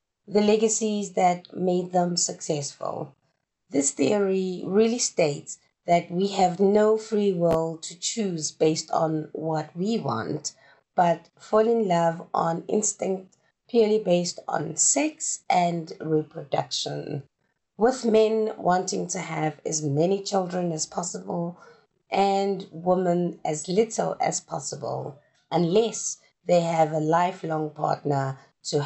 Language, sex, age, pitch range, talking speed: English, female, 30-49, 160-195 Hz, 120 wpm